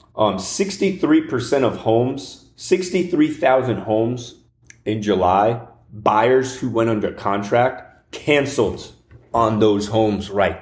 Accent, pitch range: American, 105-125 Hz